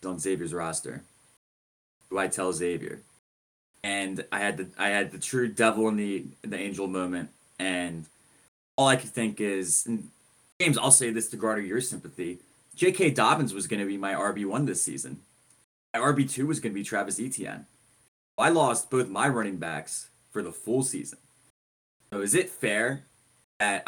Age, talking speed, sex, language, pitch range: 20-39, 175 wpm, male, English, 95-125 Hz